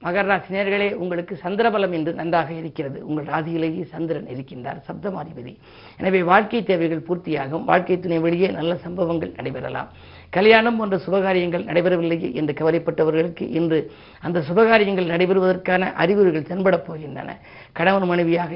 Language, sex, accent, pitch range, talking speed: Tamil, female, native, 160-190 Hz, 115 wpm